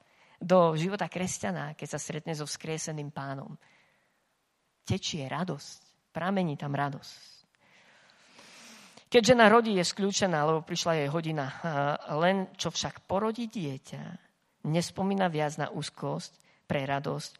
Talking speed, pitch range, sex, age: 115 wpm, 155-205 Hz, female, 40-59